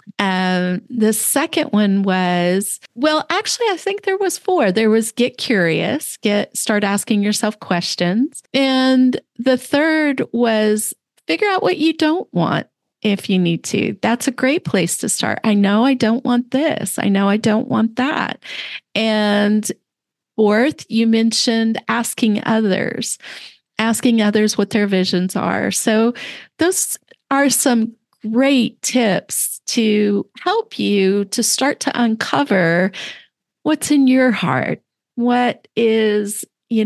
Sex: female